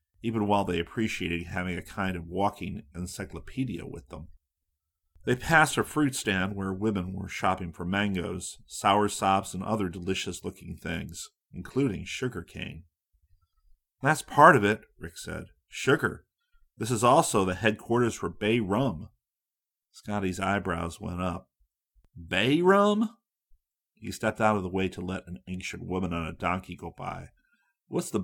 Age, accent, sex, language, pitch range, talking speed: 40-59, American, male, English, 85-120 Hz, 150 wpm